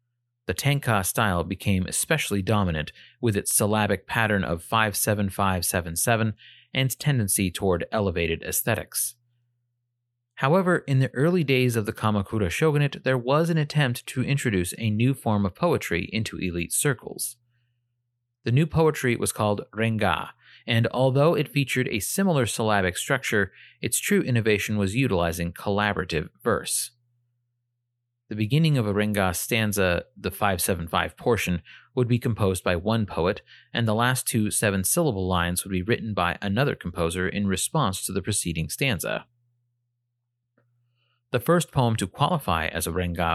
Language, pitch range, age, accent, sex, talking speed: English, 95-120 Hz, 30-49, American, male, 140 wpm